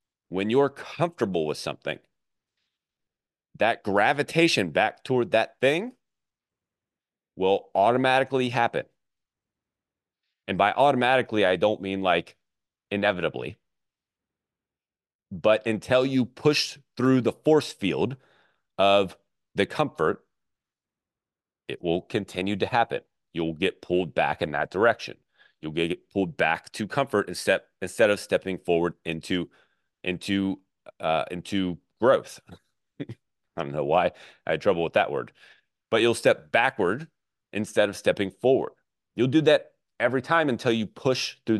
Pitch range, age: 95-135 Hz, 30-49